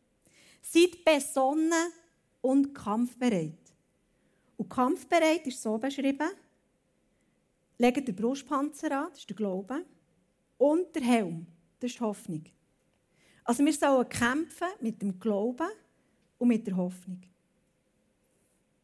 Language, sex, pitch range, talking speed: German, female, 230-300 Hz, 110 wpm